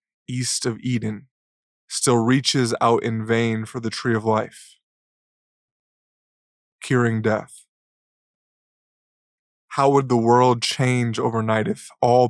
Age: 20-39